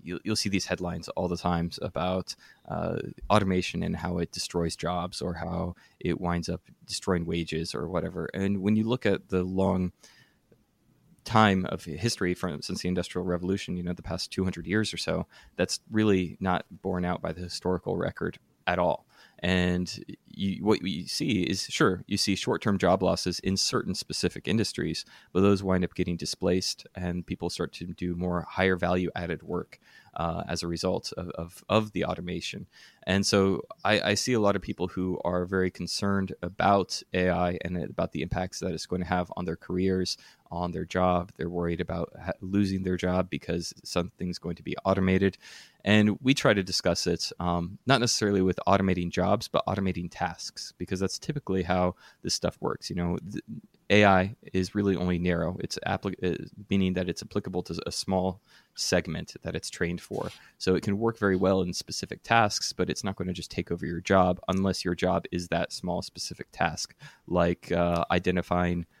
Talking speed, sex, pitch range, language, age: 185 wpm, male, 90-95 Hz, English, 20-39